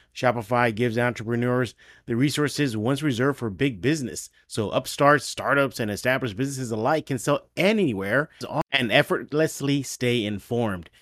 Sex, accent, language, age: male, American, English, 30-49